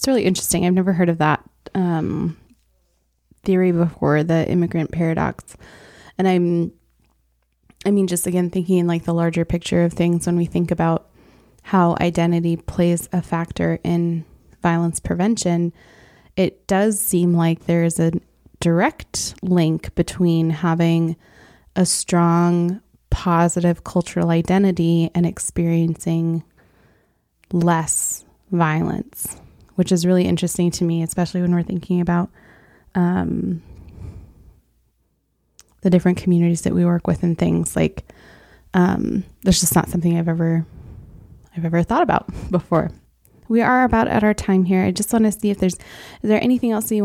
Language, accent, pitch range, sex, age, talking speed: English, American, 165-185 Hz, female, 20-39, 145 wpm